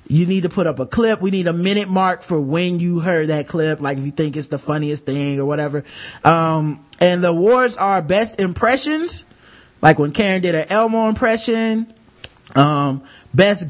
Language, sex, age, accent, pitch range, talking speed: English, male, 20-39, American, 150-210 Hz, 195 wpm